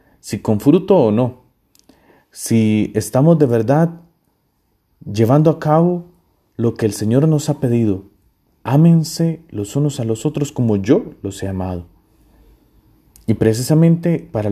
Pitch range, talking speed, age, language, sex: 100-125 Hz, 135 wpm, 30-49, Spanish, male